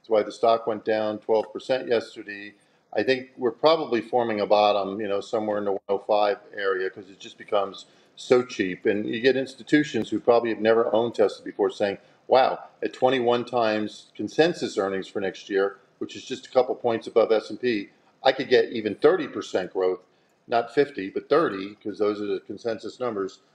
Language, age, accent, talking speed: English, 50-69, American, 190 wpm